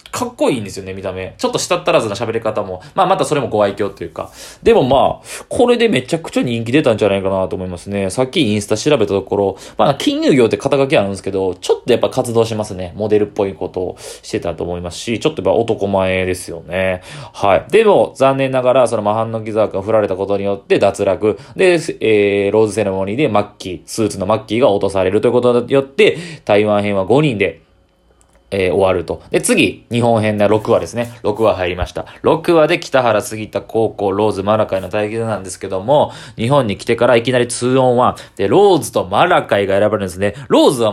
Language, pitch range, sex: Japanese, 100-125 Hz, male